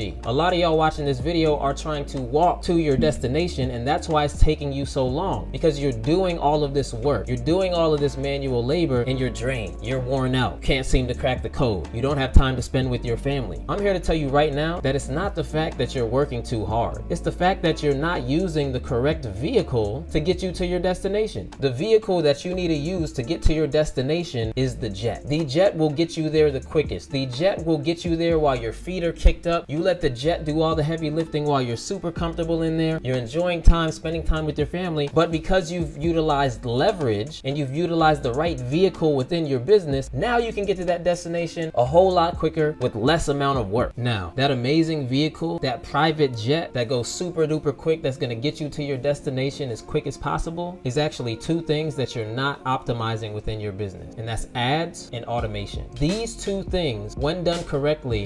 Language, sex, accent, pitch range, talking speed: English, male, American, 130-165 Hz, 230 wpm